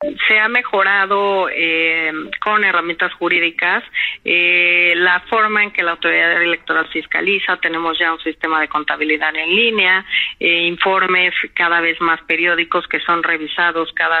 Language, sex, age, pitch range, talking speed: Spanish, female, 30-49, 165-190 Hz, 145 wpm